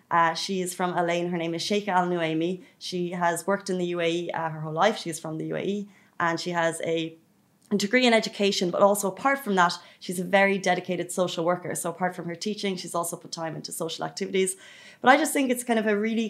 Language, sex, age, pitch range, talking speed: Arabic, female, 20-39, 175-200 Hz, 235 wpm